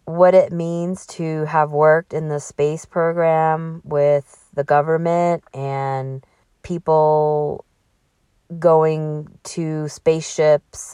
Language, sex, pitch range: English, female, 150-165 Hz